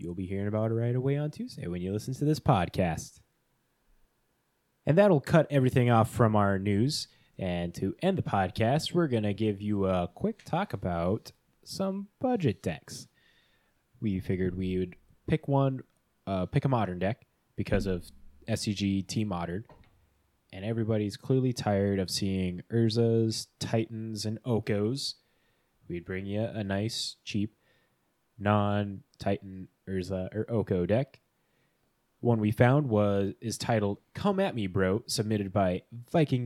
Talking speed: 150 wpm